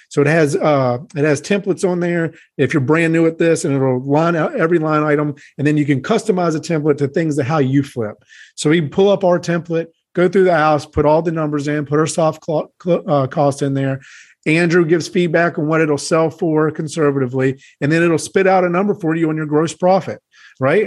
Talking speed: 230 wpm